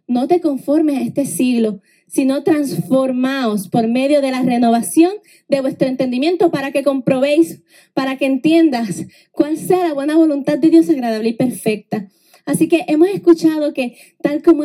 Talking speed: 160 wpm